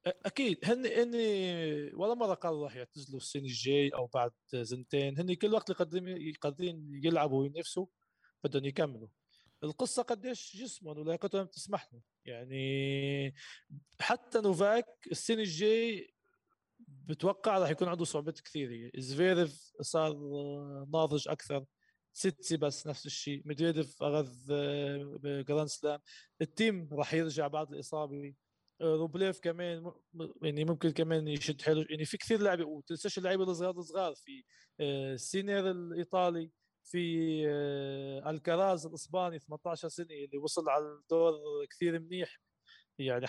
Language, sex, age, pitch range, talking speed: Arabic, male, 20-39, 145-180 Hz, 120 wpm